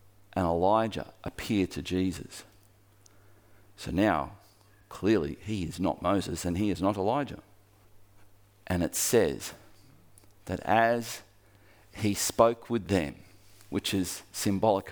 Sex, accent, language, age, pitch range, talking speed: male, Australian, English, 40-59, 95-105 Hz, 115 wpm